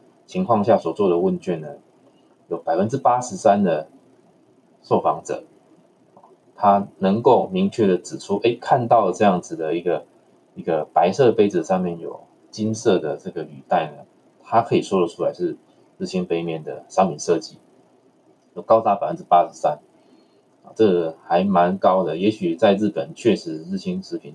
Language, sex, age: Chinese, male, 20-39